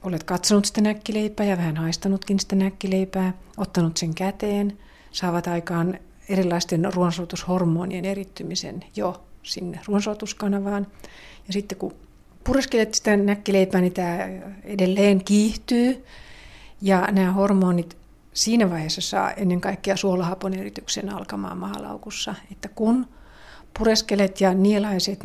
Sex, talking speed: female, 110 wpm